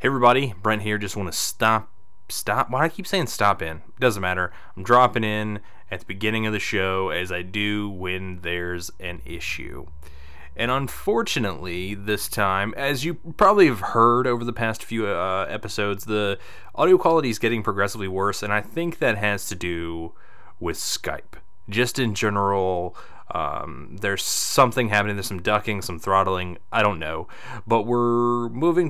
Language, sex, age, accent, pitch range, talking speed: English, male, 20-39, American, 90-120 Hz, 170 wpm